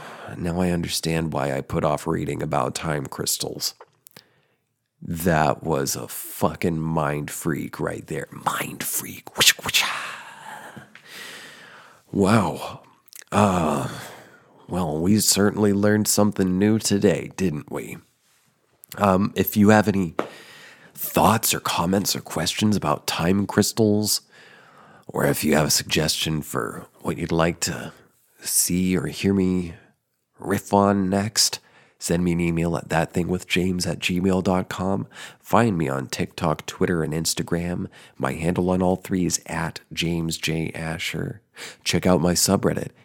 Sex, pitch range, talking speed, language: male, 80-100 Hz, 130 wpm, English